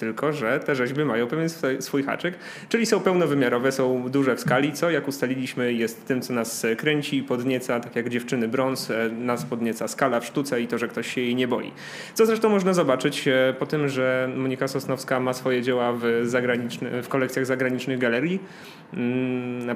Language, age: Polish, 30-49